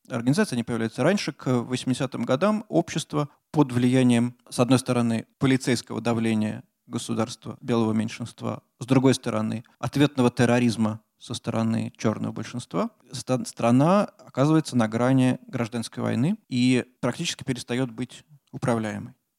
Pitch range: 120-135 Hz